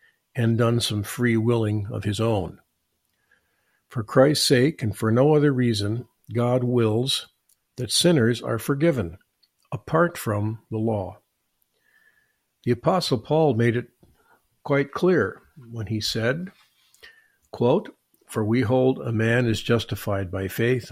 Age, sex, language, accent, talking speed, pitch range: 50-69, male, English, American, 130 wpm, 110-140 Hz